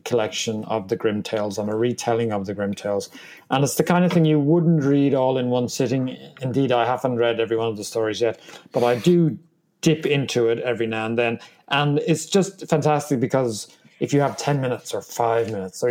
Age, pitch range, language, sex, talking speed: 30-49, 115-155 Hz, English, male, 225 wpm